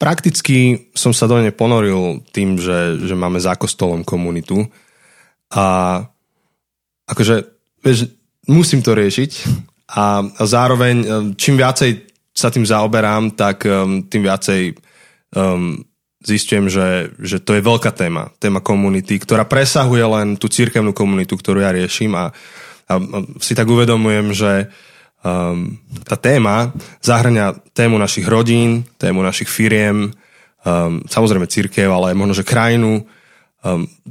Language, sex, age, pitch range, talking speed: Slovak, male, 20-39, 100-120 Hz, 130 wpm